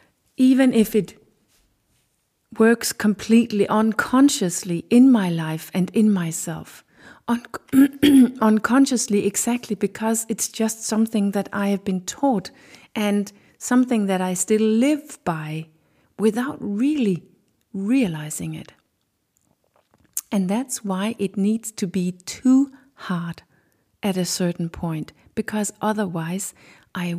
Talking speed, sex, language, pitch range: 110 wpm, female, English, 180-225 Hz